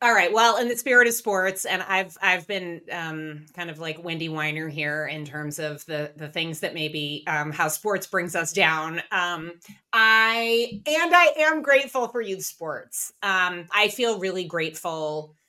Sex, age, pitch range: female, 30-49, 150-185 Hz